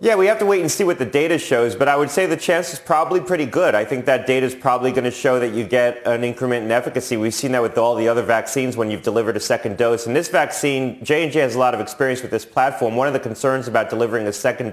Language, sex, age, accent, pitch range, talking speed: English, male, 30-49, American, 115-135 Hz, 290 wpm